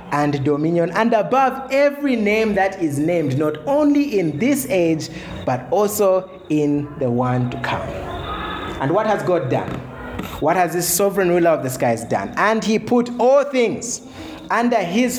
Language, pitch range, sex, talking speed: English, 120-180 Hz, male, 165 wpm